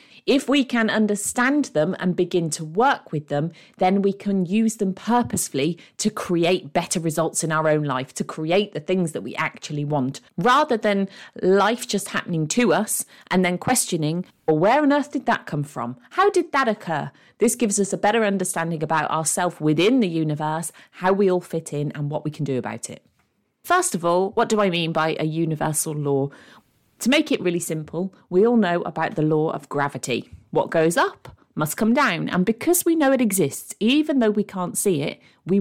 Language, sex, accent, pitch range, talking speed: English, female, British, 155-210 Hz, 205 wpm